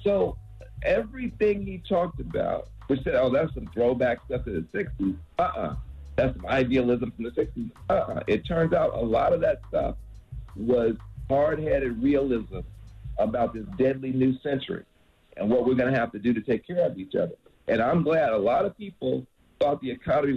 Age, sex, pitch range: 50-69, male, 125-195 Hz